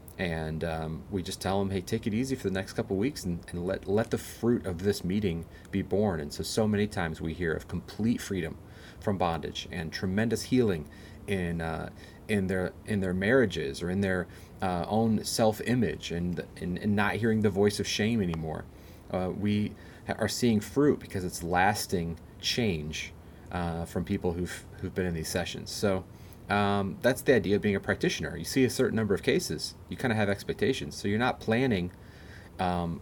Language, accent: English, American